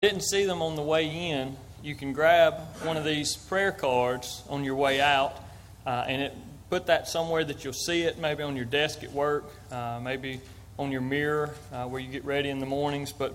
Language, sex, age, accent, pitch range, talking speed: English, male, 30-49, American, 125-150 Hz, 220 wpm